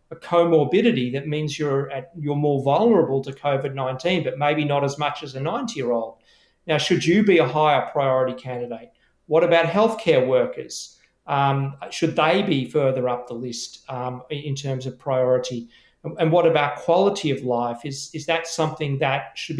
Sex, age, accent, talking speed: male, 40-59, Australian, 170 wpm